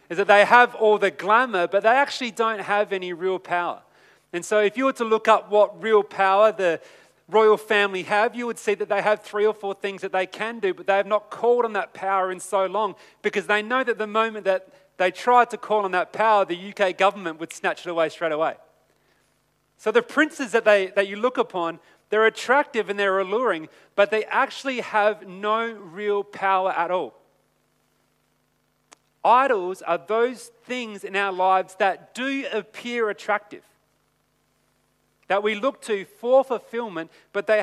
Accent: Australian